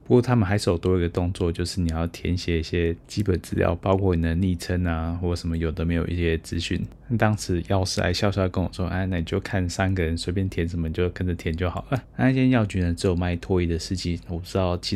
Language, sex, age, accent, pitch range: Chinese, male, 20-39, native, 85-100 Hz